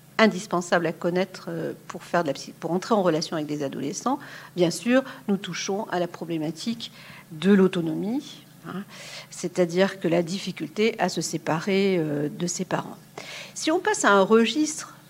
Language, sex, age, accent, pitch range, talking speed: French, female, 50-69, French, 170-220 Hz, 165 wpm